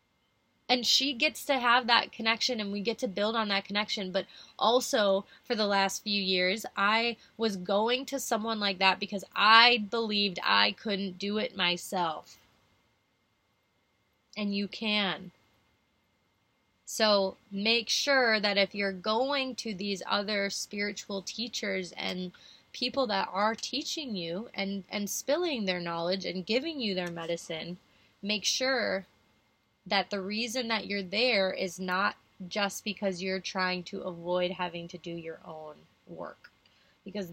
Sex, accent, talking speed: female, American, 145 wpm